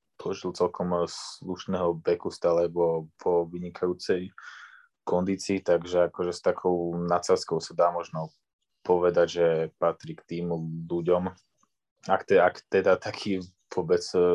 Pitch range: 85-100 Hz